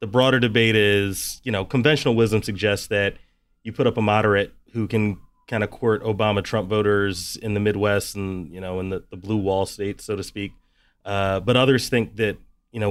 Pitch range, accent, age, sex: 95-110 Hz, American, 30-49, male